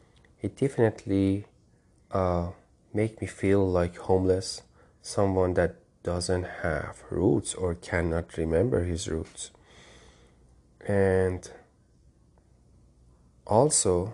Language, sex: English, male